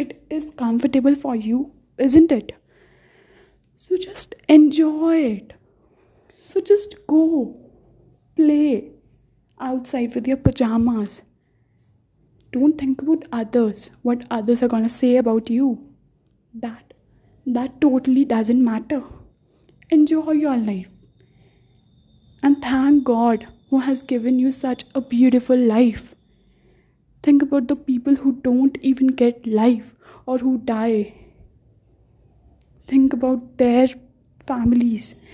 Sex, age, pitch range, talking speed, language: female, 10-29, 235-280 Hz, 110 wpm, English